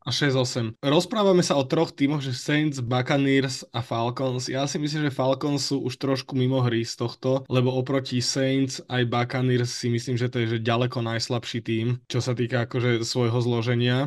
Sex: male